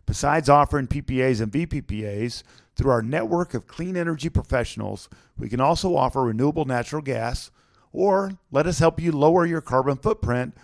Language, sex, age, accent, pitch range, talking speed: English, male, 50-69, American, 95-140 Hz, 160 wpm